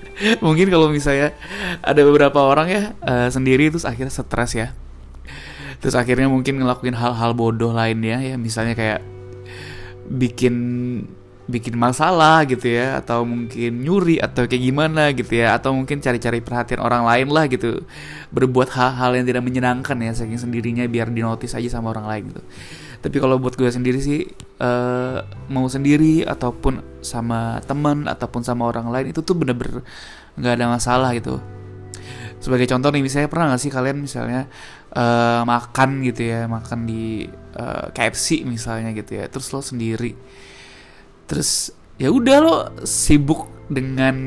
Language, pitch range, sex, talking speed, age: Indonesian, 115-135 Hz, male, 150 wpm, 20-39